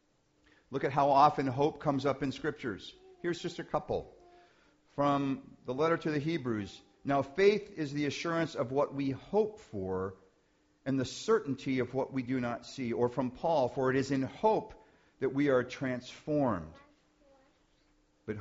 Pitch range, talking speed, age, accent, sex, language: 130-170 Hz, 165 wpm, 50-69, American, male, English